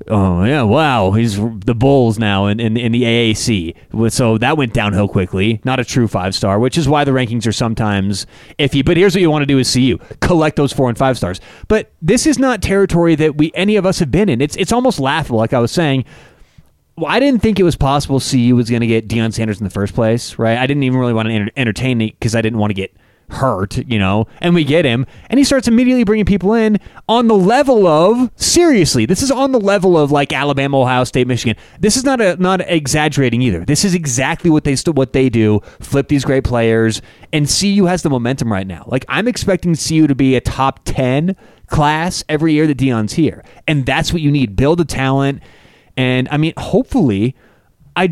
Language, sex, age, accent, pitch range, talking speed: English, male, 30-49, American, 115-165 Hz, 230 wpm